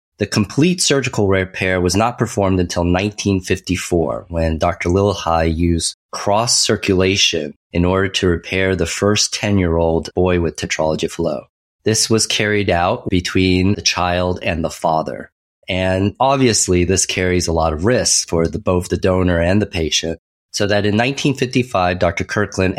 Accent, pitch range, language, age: American, 85-105 Hz, English, 30-49